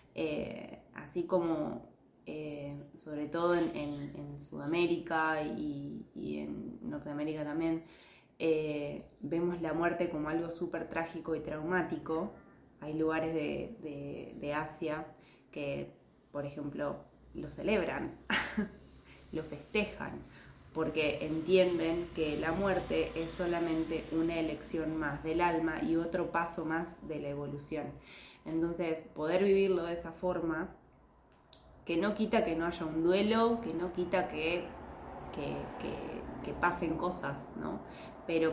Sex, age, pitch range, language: female, 20-39, 155-180 Hz, Spanish